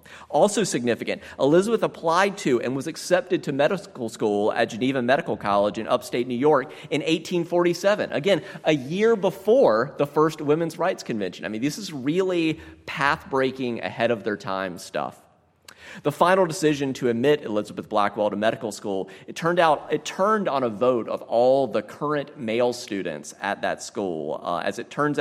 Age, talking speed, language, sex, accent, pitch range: 30-49, 160 wpm, English, male, American, 105-150 Hz